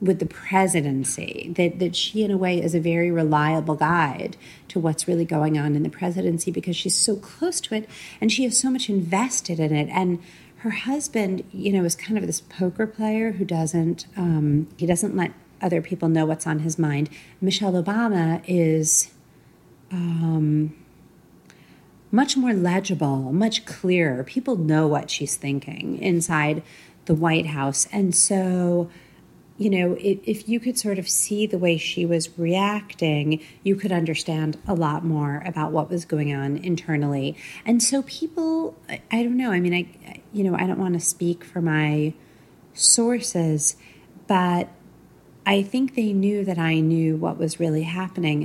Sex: female